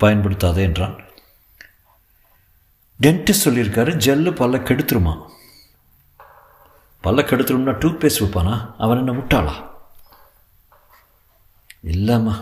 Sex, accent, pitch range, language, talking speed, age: male, native, 95-125 Hz, Tamil, 75 wpm, 50-69